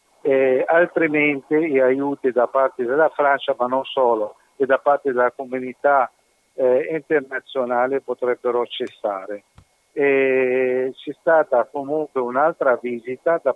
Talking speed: 120 wpm